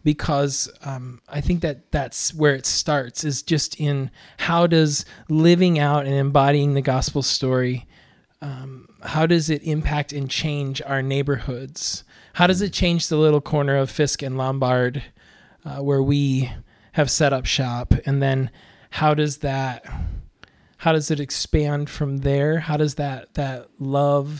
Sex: male